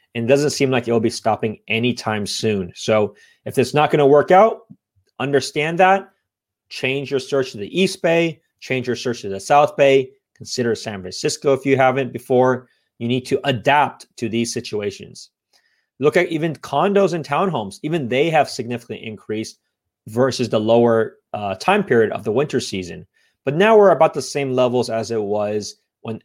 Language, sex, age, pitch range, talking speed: English, male, 30-49, 115-150 Hz, 185 wpm